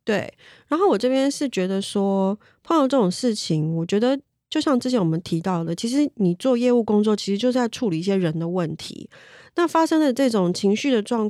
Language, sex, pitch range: Chinese, female, 185-245 Hz